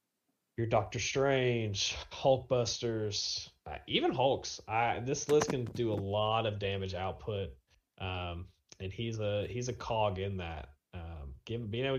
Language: English